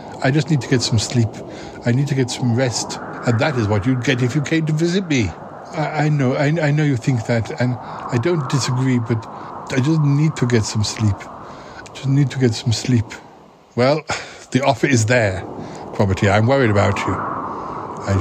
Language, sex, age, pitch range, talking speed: English, male, 60-79, 105-140 Hz, 210 wpm